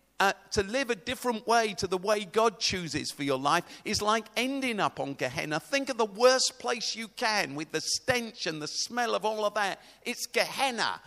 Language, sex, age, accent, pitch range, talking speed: English, male, 50-69, British, 155-225 Hz, 210 wpm